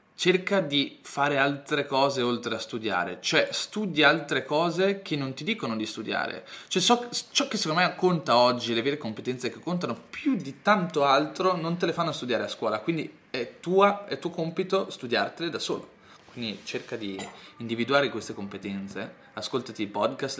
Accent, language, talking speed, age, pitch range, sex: native, Italian, 175 wpm, 20-39, 130-180 Hz, male